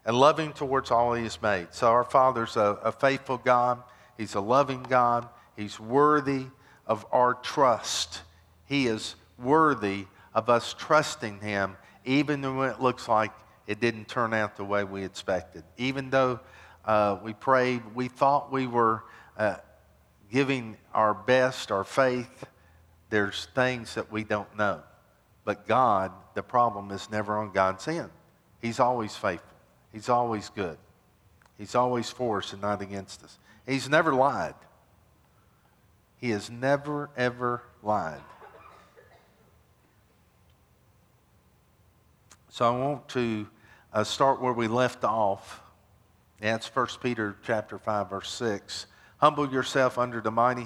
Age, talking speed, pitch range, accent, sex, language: 50-69, 135 wpm, 105-130 Hz, American, male, English